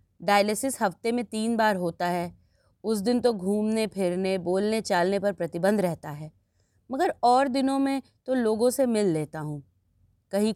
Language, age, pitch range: Hindi, 30-49, 155-230 Hz